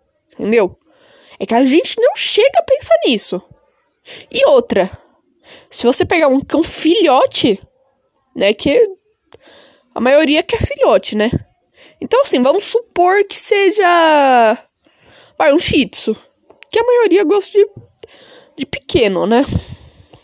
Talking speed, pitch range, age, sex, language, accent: 130 wpm, 255-395 Hz, 10-29, female, Portuguese, Brazilian